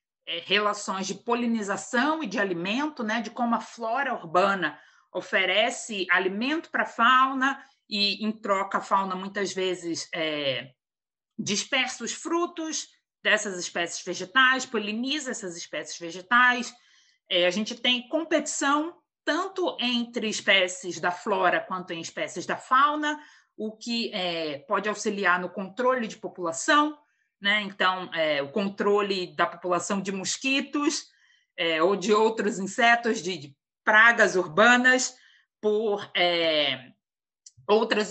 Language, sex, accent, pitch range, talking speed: Portuguese, female, Brazilian, 180-255 Hz, 115 wpm